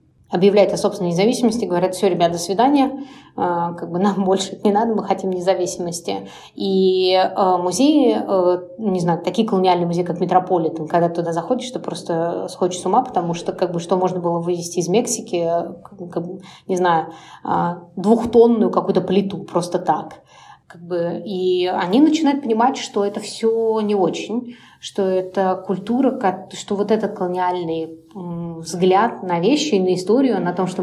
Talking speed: 155 wpm